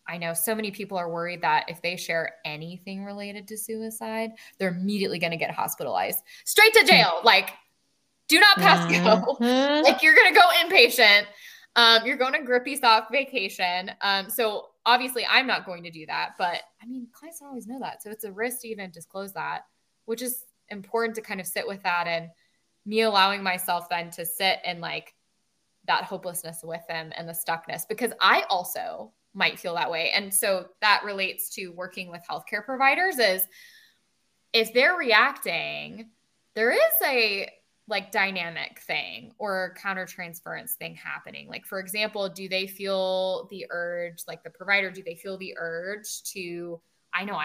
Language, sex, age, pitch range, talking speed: English, female, 10-29, 175-230 Hz, 180 wpm